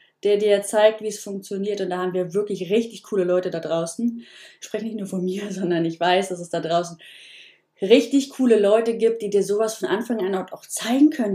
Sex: female